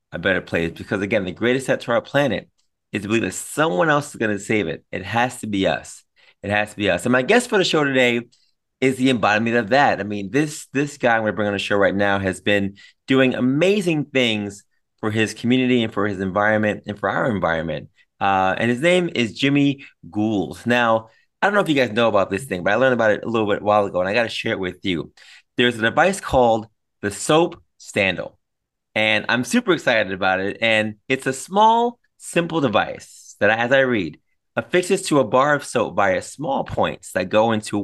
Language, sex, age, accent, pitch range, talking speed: English, male, 20-39, American, 105-135 Hz, 230 wpm